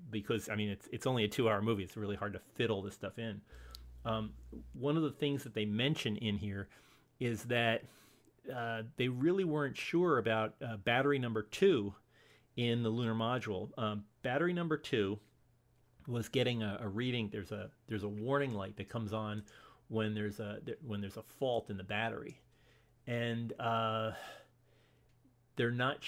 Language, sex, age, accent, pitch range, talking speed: English, male, 40-59, American, 105-125 Hz, 175 wpm